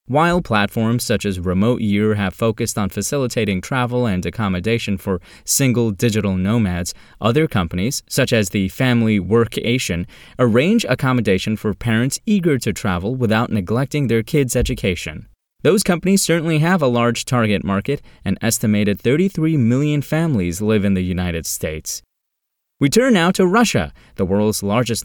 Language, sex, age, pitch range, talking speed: English, male, 20-39, 100-135 Hz, 150 wpm